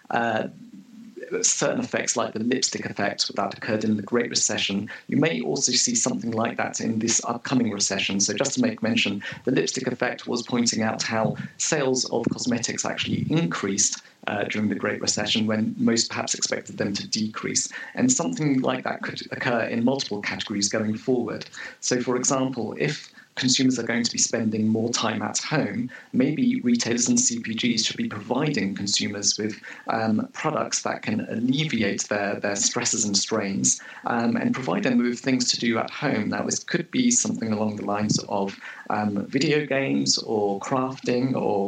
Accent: British